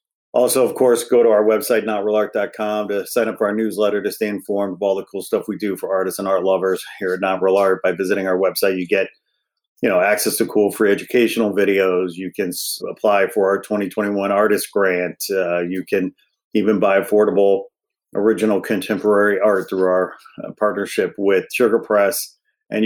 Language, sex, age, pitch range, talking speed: English, male, 40-59, 100-115 Hz, 195 wpm